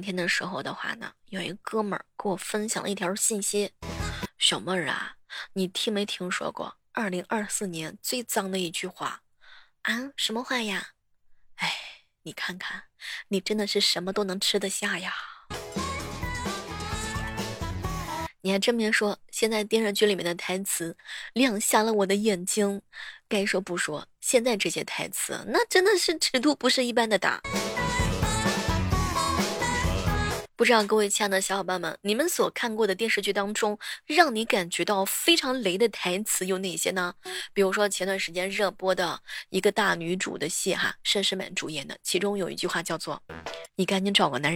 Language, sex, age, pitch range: Chinese, female, 20-39, 185-230 Hz